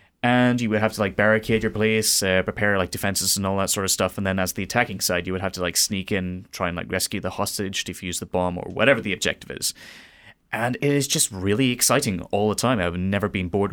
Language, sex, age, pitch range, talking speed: English, male, 20-39, 95-120 Hz, 260 wpm